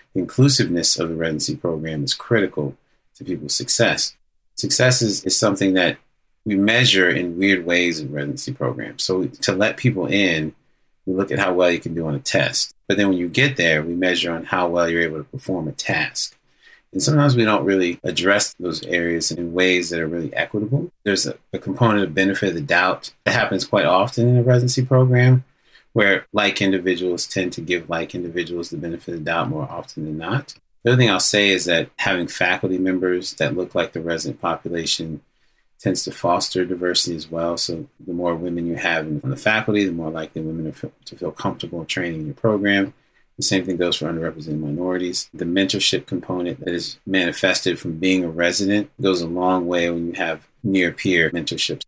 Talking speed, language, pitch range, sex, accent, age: 200 wpm, English, 85-100 Hz, male, American, 30-49